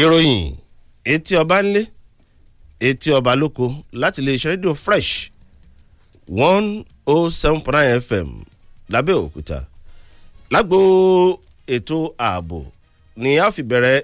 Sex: male